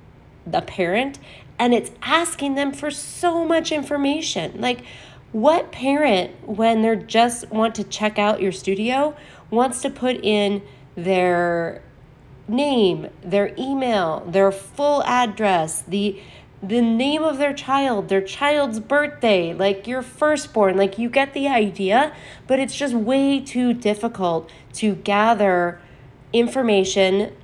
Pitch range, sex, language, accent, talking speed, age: 175-245 Hz, female, English, American, 130 wpm, 30-49